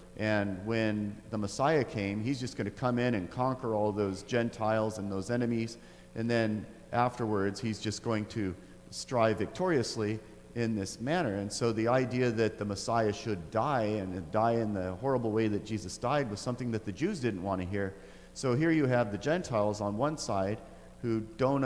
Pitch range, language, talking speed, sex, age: 105-125 Hz, English, 190 wpm, male, 40-59